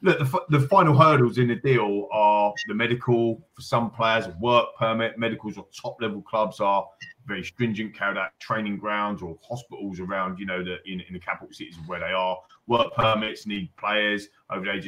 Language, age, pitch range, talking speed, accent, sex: English, 30-49, 105-140 Hz, 200 wpm, British, male